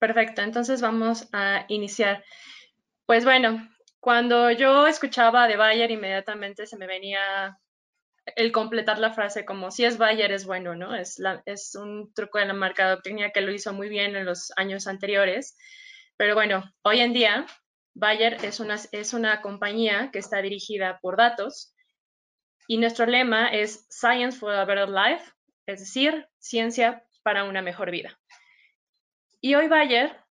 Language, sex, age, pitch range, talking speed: Spanish, female, 20-39, 200-235 Hz, 160 wpm